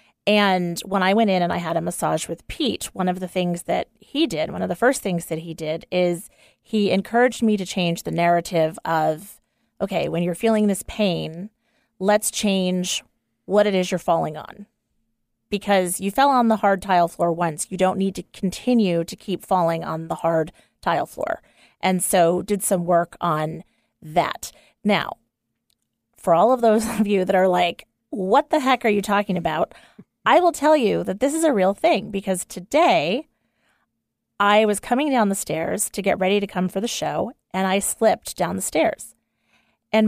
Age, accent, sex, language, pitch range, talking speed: 30-49, American, female, English, 175-220 Hz, 195 wpm